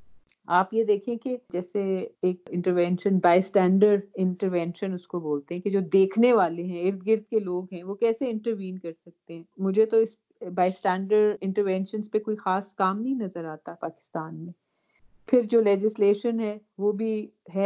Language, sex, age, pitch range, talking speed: Urdu, female, 40-59, 180-220 Hz, 175 wpm